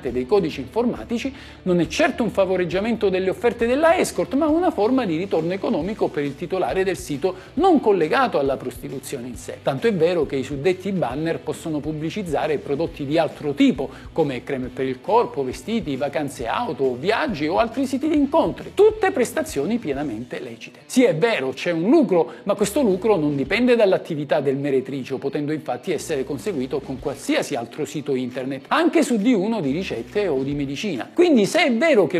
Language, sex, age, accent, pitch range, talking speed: Italian, male, 50-69, native, 150-245 Hz, 175 wpm